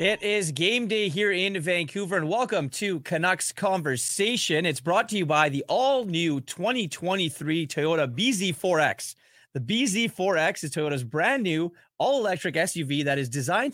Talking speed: 155 wpm